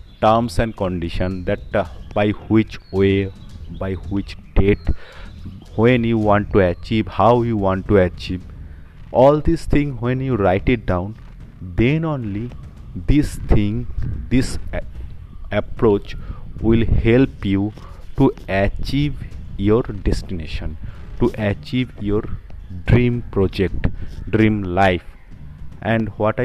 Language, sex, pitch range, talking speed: English, male, 90-110 Hz, 120 wpm